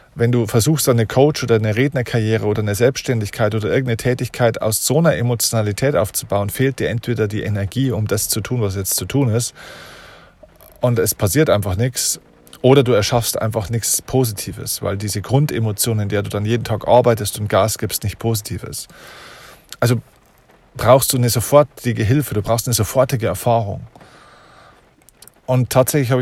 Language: German